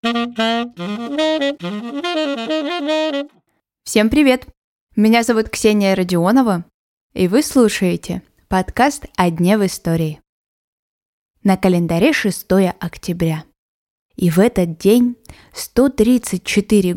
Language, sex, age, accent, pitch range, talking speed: Russian, female, 20-39, native, 160-235 Hz, 90 wpm